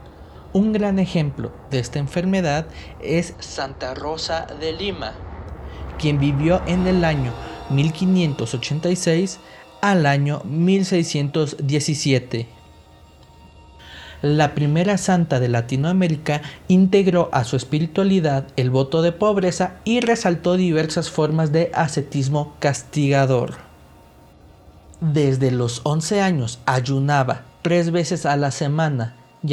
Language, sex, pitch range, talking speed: Spanish, male, 130-170 Hz, 105 wpm